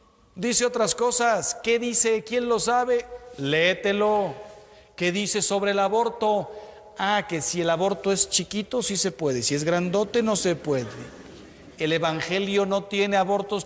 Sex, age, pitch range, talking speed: male, 40-59, 155-210 Hz, 155 wpm